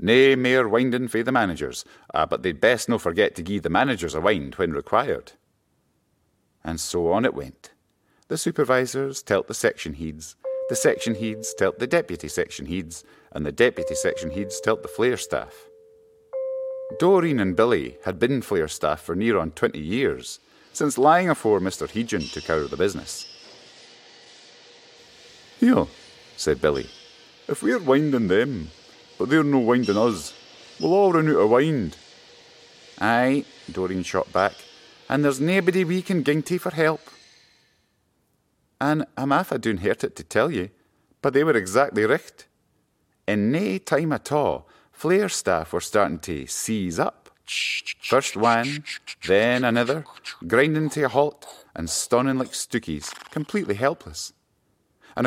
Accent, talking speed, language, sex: British, 155 wpm, English, male